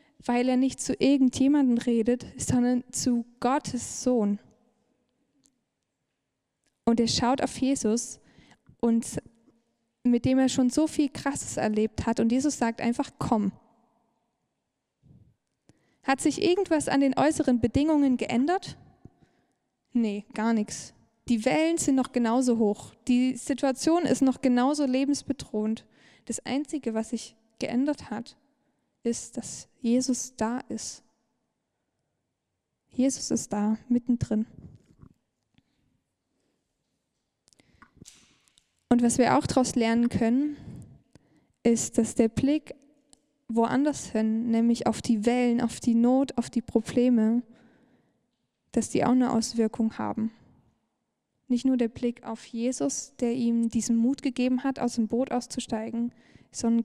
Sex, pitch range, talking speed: female, 230-265 Hz, 120 wpm